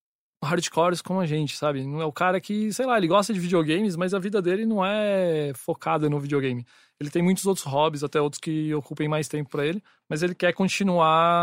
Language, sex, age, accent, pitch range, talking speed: English, male, 20-39, Brazilian, 145-165 Hz, 220 wpm